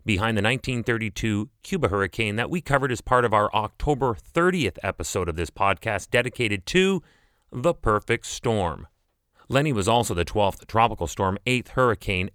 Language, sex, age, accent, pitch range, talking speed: English, male, 30-49, American, 105-140 Hz, 155 wpm